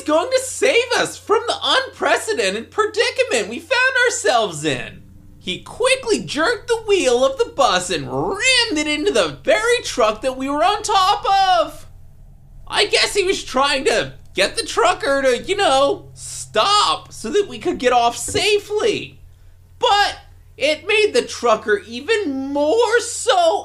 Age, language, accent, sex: 30-49, English, American, male